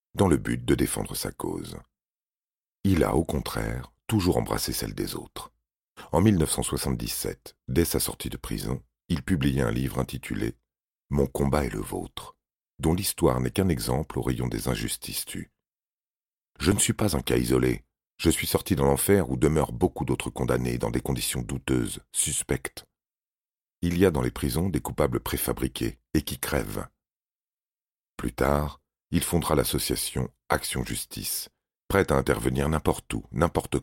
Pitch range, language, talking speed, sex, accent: 65-80 Hz, French, 165 wpm, male, French